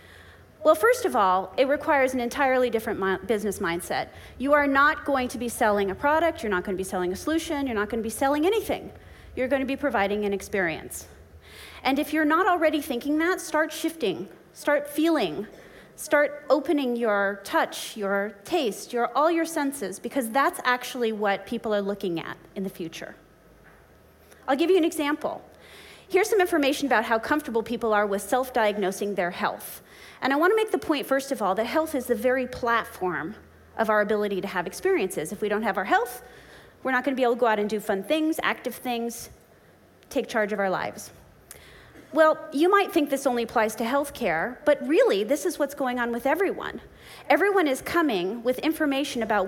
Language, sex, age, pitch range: English, female, 30-49, 210-305 Hz